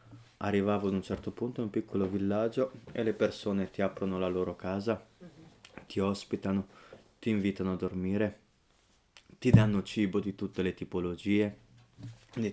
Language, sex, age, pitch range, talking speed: Italian, male, 20-39, 95-110 Hz, 150 wpm